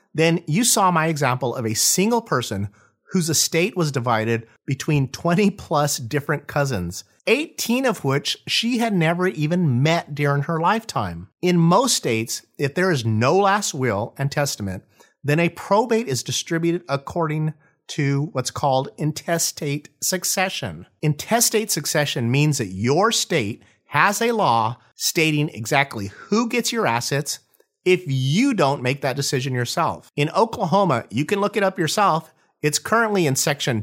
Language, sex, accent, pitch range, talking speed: English, male, American, 135-190 Hz, 150 wpm